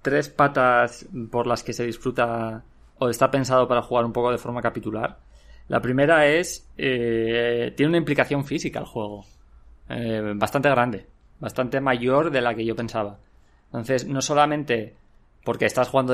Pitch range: 115-135 Hz